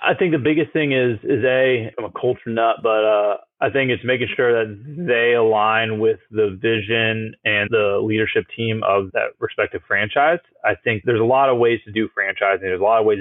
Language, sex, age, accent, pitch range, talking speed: English, male, 30-49, American, 105-135 Hz, 220 wpm